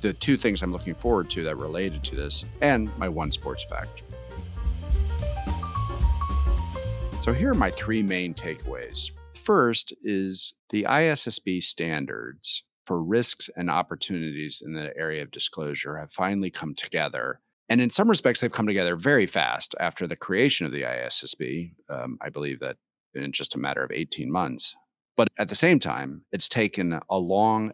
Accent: American